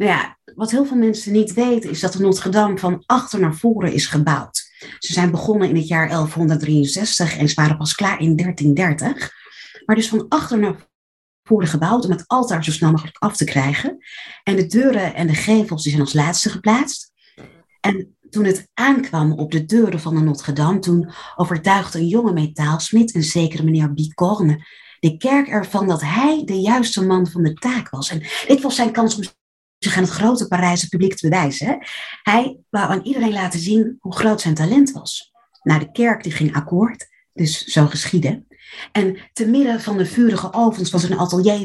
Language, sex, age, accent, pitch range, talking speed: Dutch, female, 30-49, Dutch, 160-220 Hz, 195 wpm